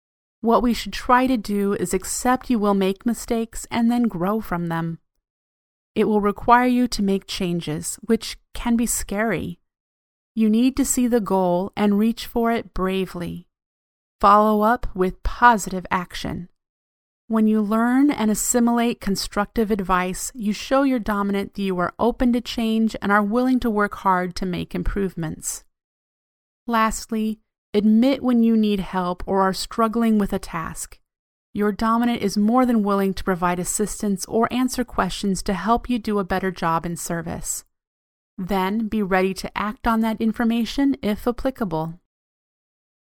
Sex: female